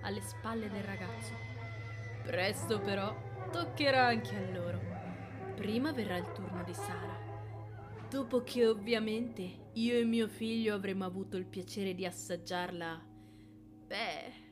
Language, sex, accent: Italian, female, native